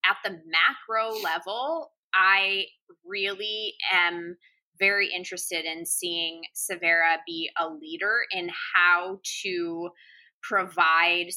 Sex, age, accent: female, 20-39, American